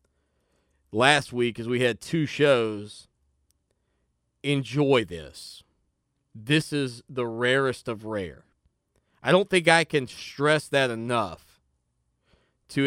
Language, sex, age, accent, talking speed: English, male, 30-49, American, 110 wpm